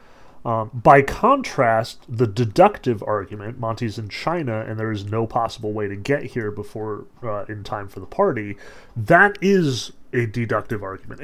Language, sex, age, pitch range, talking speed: English, male, 30-49, 115-145 Hz, 160 wpm